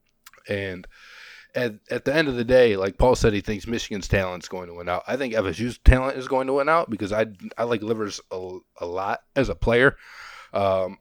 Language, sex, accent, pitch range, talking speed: English, male, American, 95-110 Hz, 225 wpm